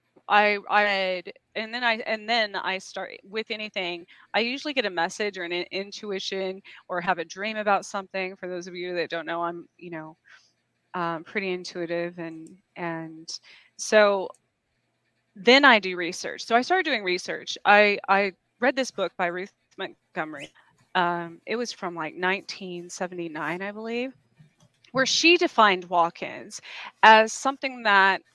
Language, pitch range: English, 175-220 Hz